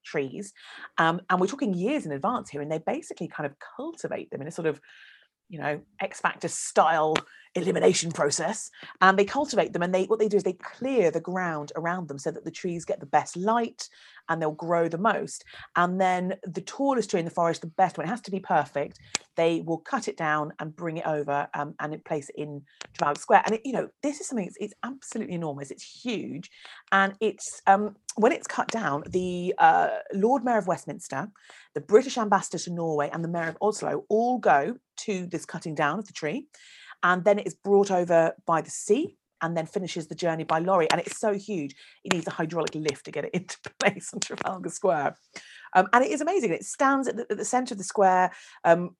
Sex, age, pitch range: female, 40-59, 165-210 Hz